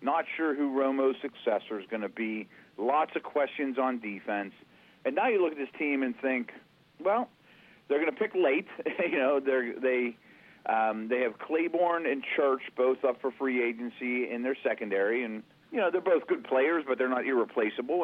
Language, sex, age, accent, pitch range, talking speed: English, male, 40-59, American, 120-150 Hz, 190 wpm